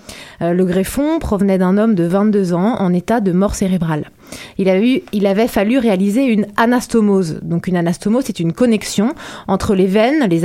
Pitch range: 180-230 Hz